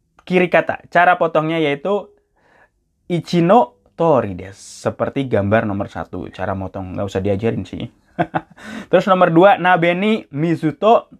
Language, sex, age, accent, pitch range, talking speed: Indonesian, male, 20-39, native, 105-180 Hz, 125 wpm